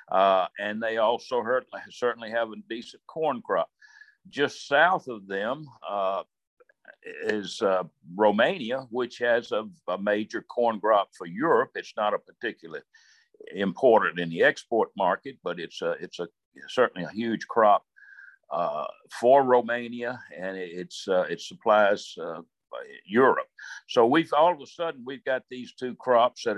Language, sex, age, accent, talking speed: English, male, 60-79, American, 150 wpm